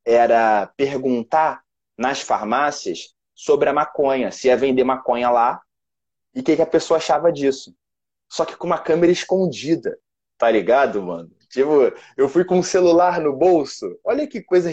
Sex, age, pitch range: male, 20-39, 140-200 Hz